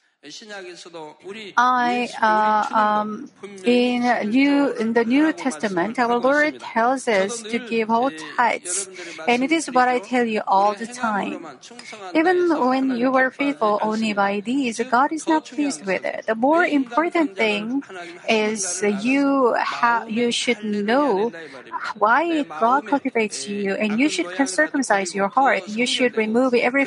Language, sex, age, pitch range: Korean, female, 40-59, 210-270 Hz